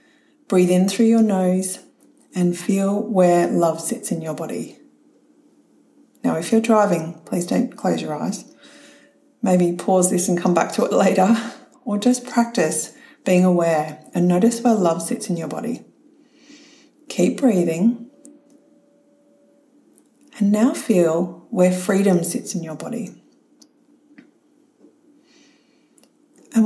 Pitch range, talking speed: 185-290 Hz, 125 wpm